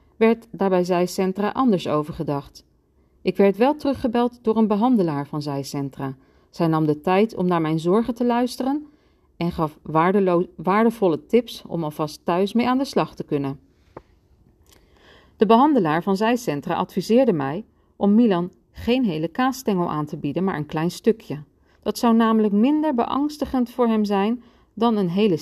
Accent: Dutch